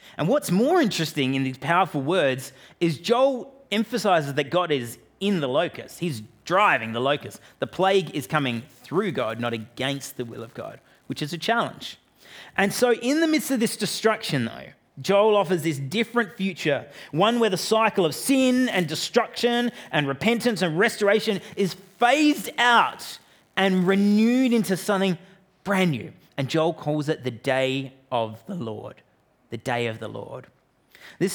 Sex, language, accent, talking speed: male, English, Australian, 165 wpm